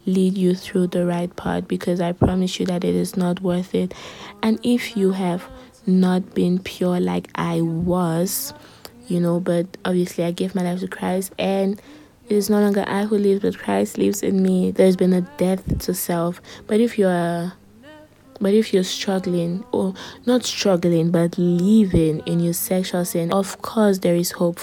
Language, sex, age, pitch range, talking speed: English, female, 20-39, 170-185 Hz, 190 wpm